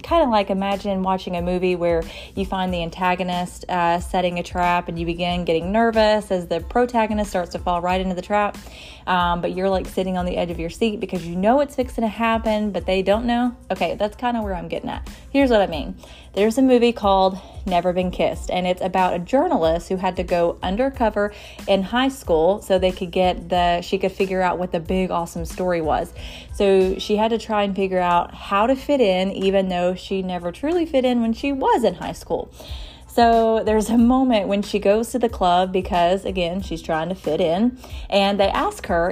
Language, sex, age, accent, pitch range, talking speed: English, female, 30-49, American, 180-230 Hz, 225 wpm